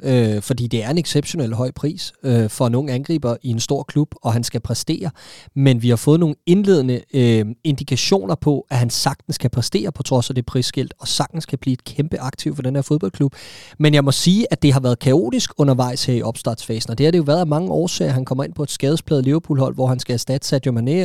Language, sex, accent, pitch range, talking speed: Danish, male, native, 130-160 Hz, 240 wpm